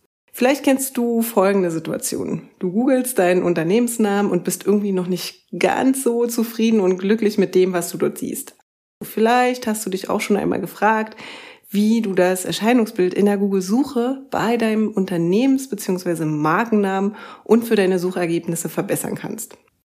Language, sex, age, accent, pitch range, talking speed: German, female, 30-49, German, 180-225 Hz, 155 wpm